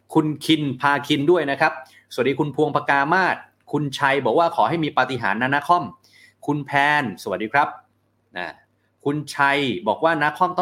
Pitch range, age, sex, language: 115-155 Hz, 30-49, male, Thai